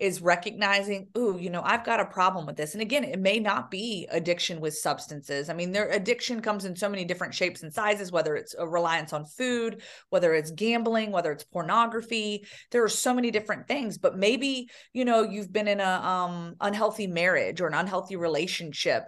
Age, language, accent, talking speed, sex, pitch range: 30-49, English, American, 205 wpm, female, 165-200 Hz